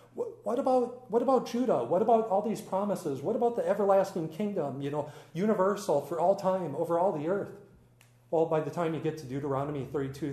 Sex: male